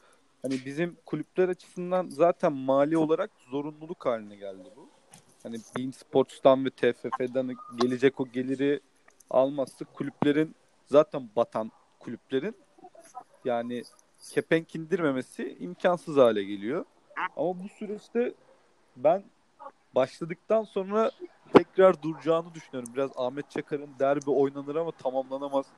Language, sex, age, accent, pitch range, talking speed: Turkish, male, 40-59, native, 135-180 Hz, 105 wpm